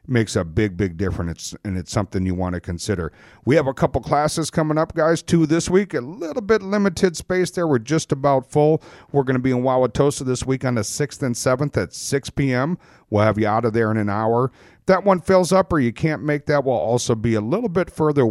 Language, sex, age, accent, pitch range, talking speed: English, male, 50-69, American, 110-145 Hz, 245 wpm